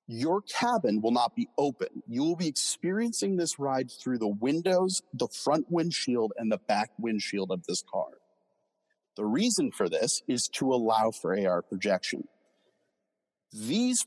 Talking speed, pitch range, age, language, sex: 155 wpm, 115-145 Hz, 40-59, English, male